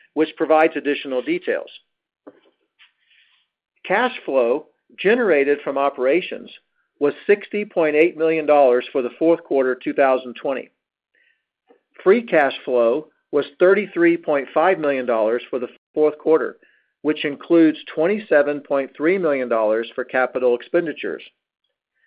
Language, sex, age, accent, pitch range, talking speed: English, male, 50-69, American, 140-180 Hz, 90 wpm